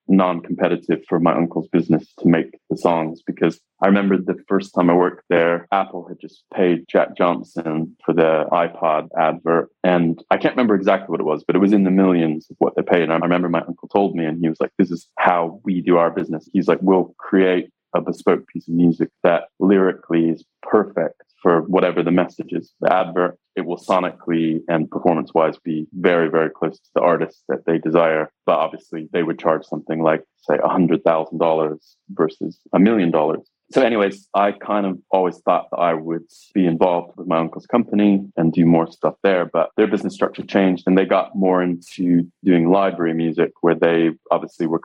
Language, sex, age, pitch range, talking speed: English, male, 20-39, 80-90 Hz, 200 wpm